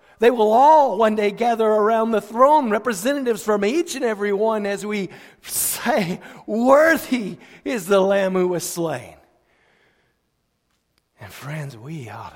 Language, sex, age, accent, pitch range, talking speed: English, male, 50-69, American, 175-215 Hz, 140 wpm